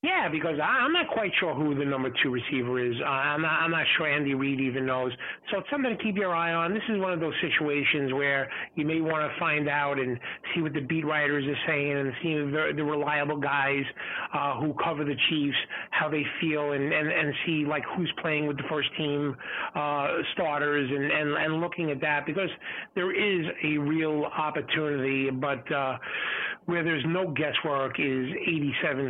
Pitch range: 140-160 Hz